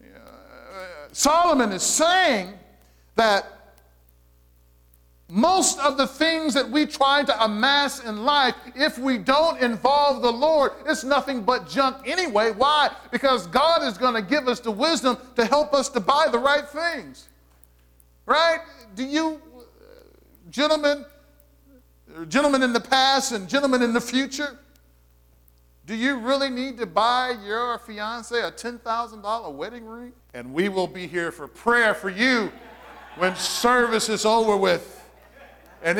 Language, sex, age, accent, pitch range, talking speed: English, male, 50-69, American, 175-270 Hz, 145 wpm